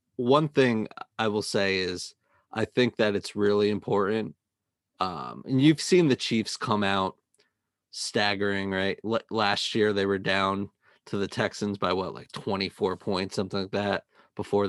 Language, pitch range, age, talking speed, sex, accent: English, 100-110 Hz, 30-49, 165 wpm, male, American